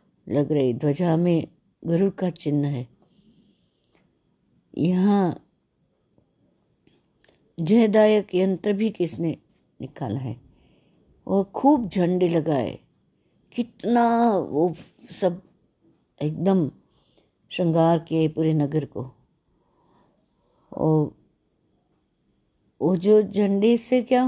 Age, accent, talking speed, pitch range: 60-79, native, 85 wpm, 150-190 Hz